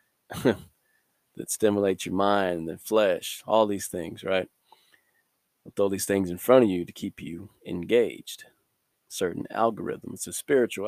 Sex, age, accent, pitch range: male, 20-39, American, 95-115 Hz